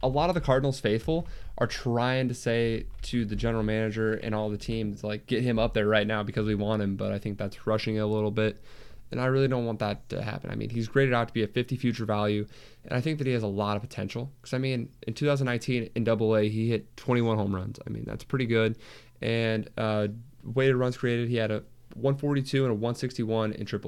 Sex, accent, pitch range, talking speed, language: male, American, 110-125 Hz, 240 wpm, English